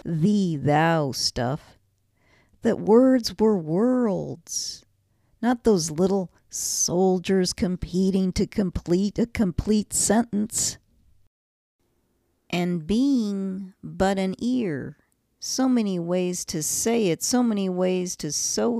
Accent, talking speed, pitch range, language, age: American, 105 wpm, 165-210 Hz, English, 50-69